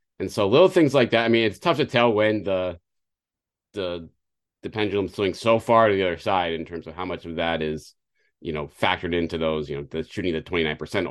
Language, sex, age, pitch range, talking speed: English, male, 30-49, 90-120 Hz, 245 wpm